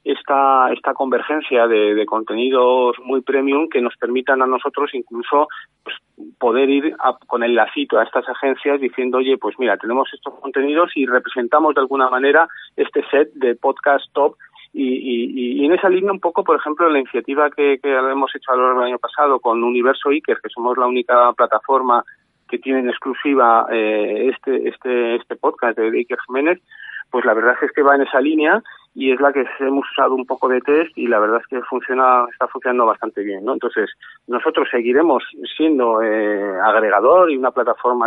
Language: Spanish